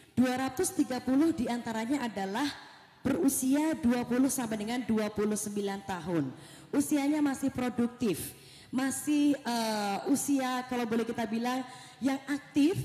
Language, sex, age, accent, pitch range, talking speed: Indonesian, female, 20-39, native, 230-290 Hz, 100 wpm